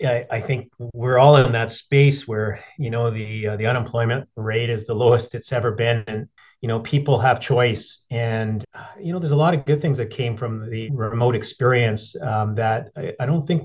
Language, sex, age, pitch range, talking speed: English, male, 30-49, 115-135 Hz, 210 wpm